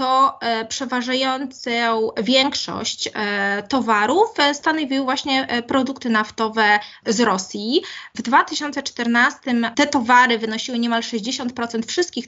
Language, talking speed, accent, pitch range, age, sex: Polish, 90 wpm, native, 215-265 Hz, 20-39, female